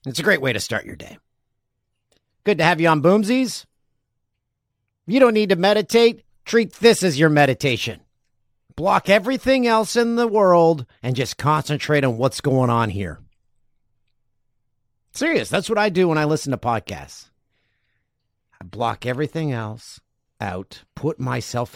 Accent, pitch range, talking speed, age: American, 110-155 Hz, 150 wpm, 50-69